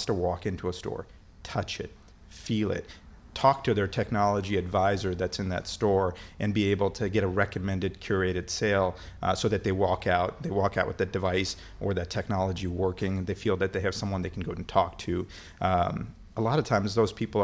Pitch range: 95-115 Hz